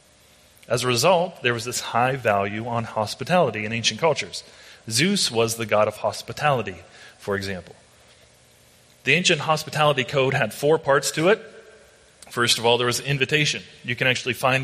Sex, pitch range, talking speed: male, 110-140 Hz, 165 wpm